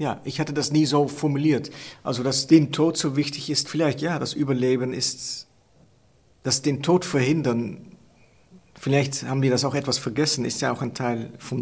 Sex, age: male, 50-69